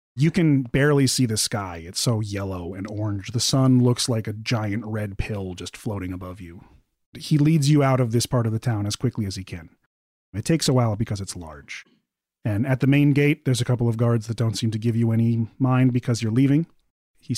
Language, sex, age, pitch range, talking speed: English, male, 30-49, 100-130 Hz, 230 wpm